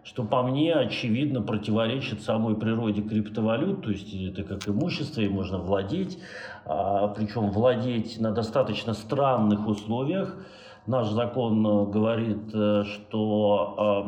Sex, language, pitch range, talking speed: male, Russian, 105-130 Hz, 110 wpm